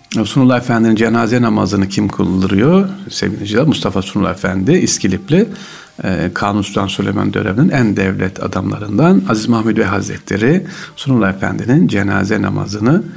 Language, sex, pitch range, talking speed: Turkish, male, 95-125 Hz, 125 wpm